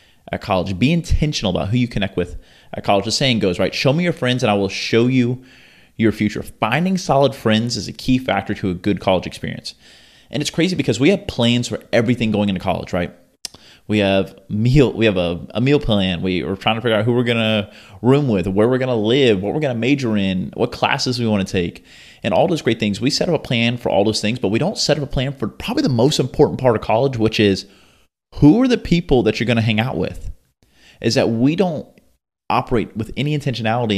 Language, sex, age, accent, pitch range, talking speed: English, male, 30-49, American, 100-130 Hz, 240 wpm